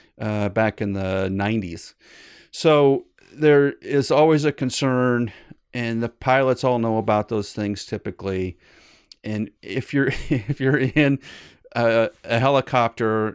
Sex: male